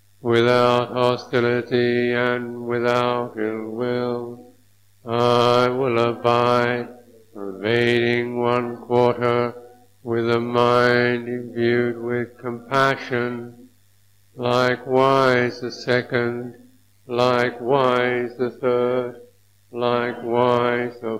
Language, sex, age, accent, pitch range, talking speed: English, male, 60-79, American, 115-120 Hz, 75 wpm